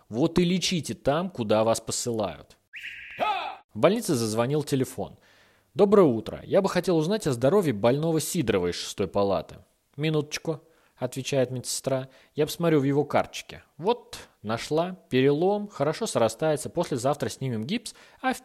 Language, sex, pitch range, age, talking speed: Russian, male, 115-170 Hz, 20-39, 135 wpm